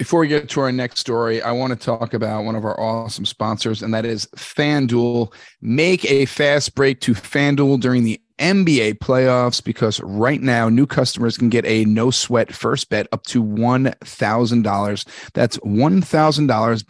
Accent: American